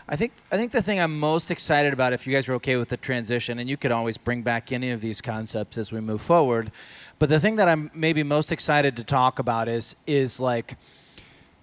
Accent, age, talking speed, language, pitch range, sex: American, 30-49, 235 wpm, English, 120-160 Hz, male